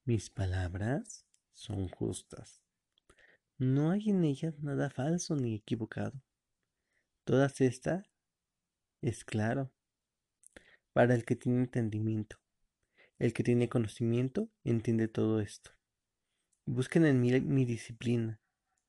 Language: Spanish